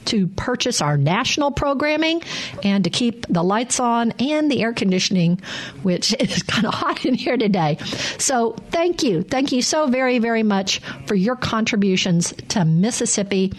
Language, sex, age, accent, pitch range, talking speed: English, female, 50-69, American, 185-250 Hz, 165 wpm